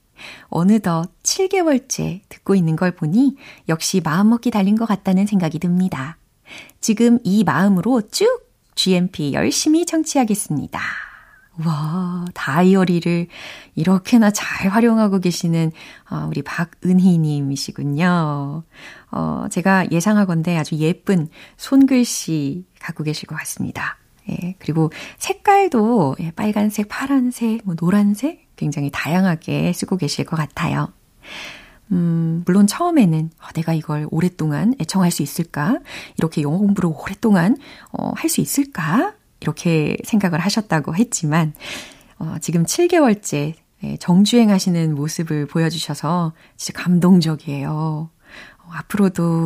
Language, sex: Korean, female